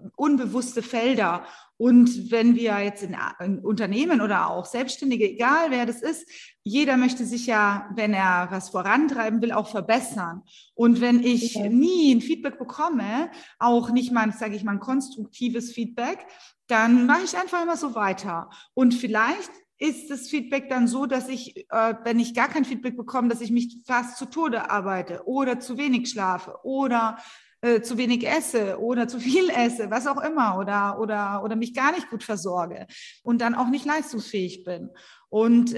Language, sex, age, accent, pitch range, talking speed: German, female, 30-49, German, 215-265 Hz, 175 wpm